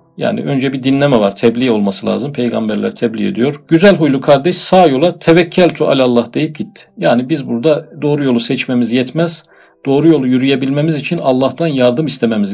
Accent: native